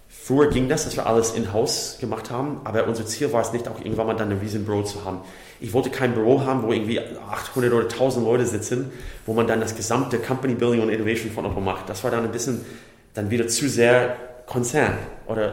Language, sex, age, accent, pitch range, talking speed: German, male, 30-49, German, 105-120 Hz, 225 wpm